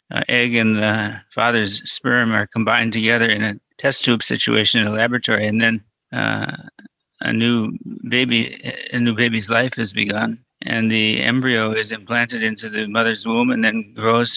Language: English